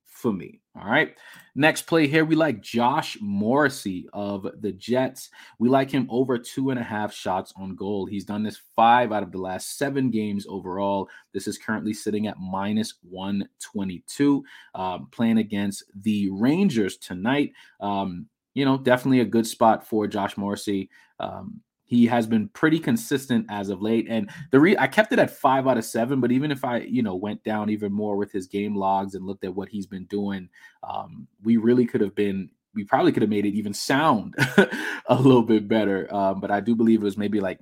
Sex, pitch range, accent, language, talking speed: male, 100-130 Hz, American, English, 200 wpm